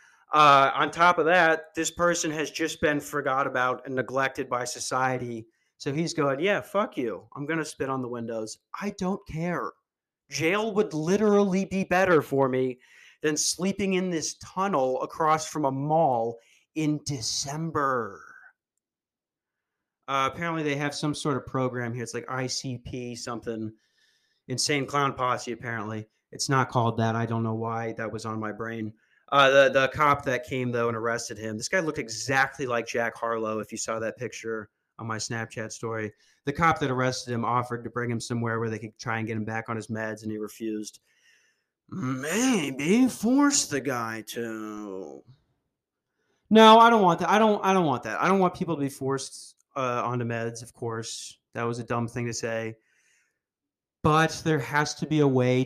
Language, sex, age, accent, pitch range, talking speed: English, male, 30-49, American, 115-155 Hz, 185 wpm